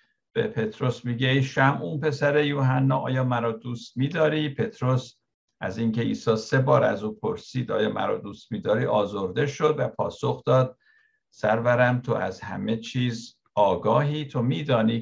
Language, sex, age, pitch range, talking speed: Persian, male, 50-69, 115-145 Hz, 150 wpm